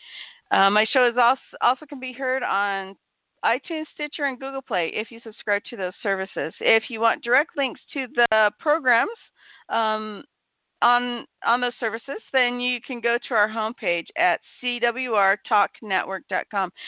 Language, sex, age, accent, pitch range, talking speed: English, female, 40-59, American, 215-260 Hz, 155 wpm